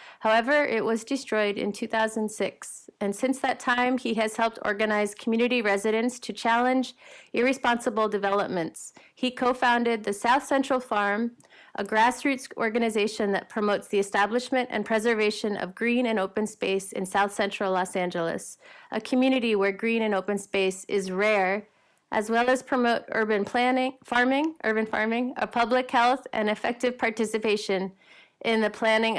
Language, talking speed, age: English, 150 wpm, 30-49